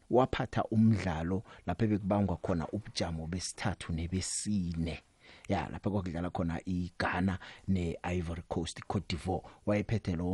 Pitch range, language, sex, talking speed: 85-110 Hz, English, male, 120 wpm